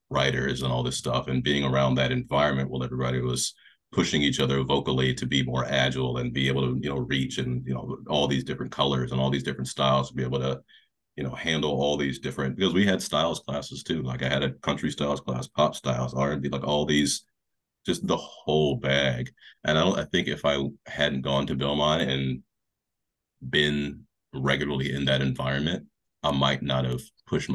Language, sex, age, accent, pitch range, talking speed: English, male, 30-49, American, 65-70 Hz, 210 wpm